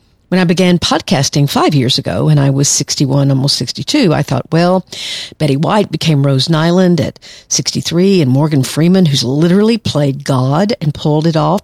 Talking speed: 175 wpm